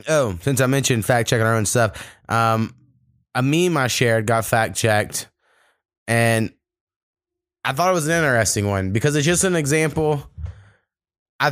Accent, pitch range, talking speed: American, 110-135 Hz, 160 wpm